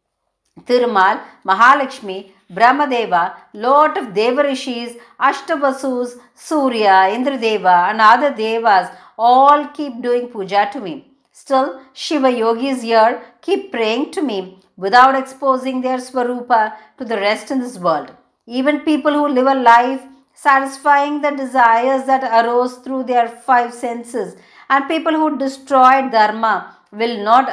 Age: 50-69